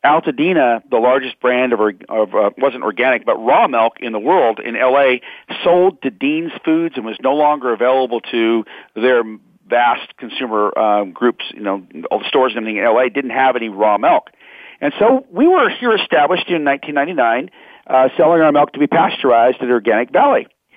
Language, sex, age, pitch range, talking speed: English, male, 50-69, 125-185 Hz, 180 wpm